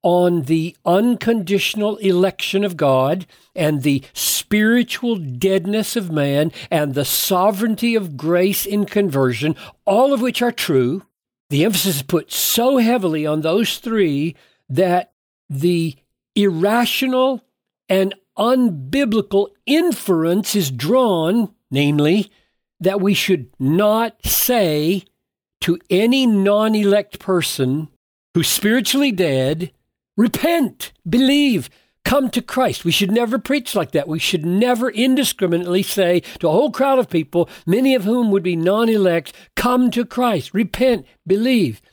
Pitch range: 165-225 Hz